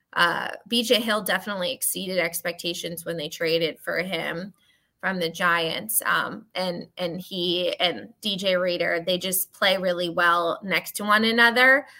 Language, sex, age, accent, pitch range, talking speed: English, female, 20-39, American, 180-220 Hz, 150 wpm